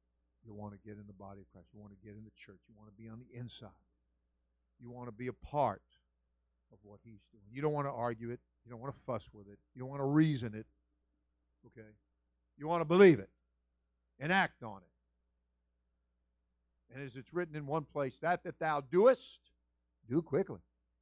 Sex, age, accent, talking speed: male, 50-69, American, 215 wpm